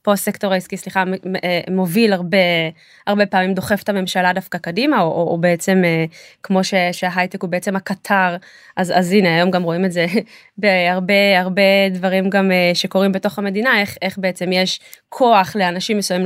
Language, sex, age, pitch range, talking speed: Hebrew, female, 20-39, 185-225 Hz, 165 wpm